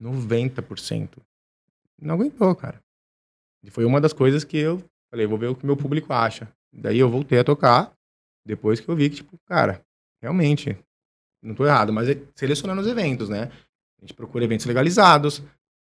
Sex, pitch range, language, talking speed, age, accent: male, 115-150 Hz, Portuguese, 170 wpm, 20-39, Brazilian